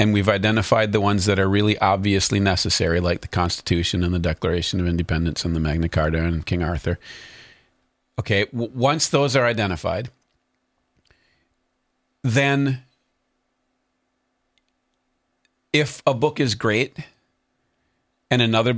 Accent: American